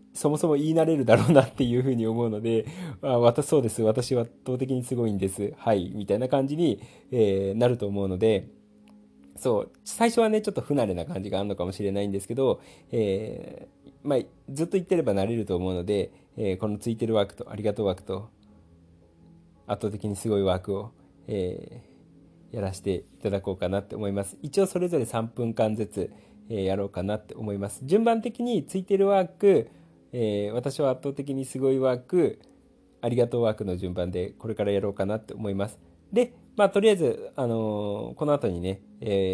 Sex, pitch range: male, 100-135 Hz